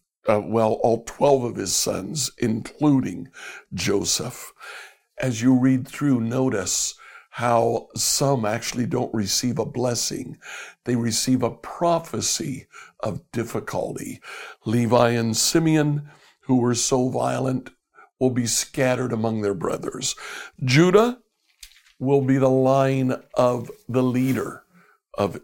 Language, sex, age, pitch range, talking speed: English, male, 60-79, 110-130 Hz, 115 wpm